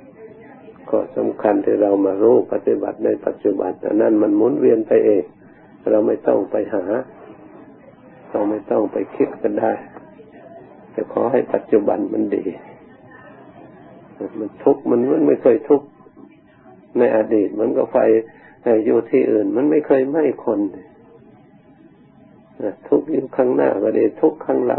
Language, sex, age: Thai, male, 60-79